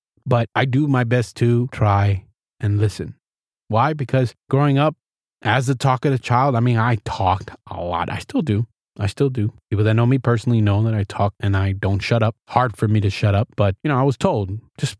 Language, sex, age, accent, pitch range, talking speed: English, male, 20-39, American, 100-125 Hz, 230 wpm